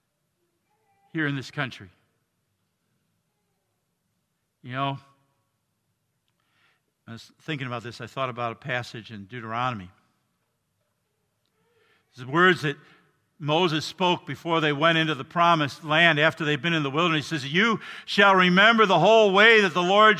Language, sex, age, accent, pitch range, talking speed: English, male, 50-69, American, 160-215 Hz, 145 wpm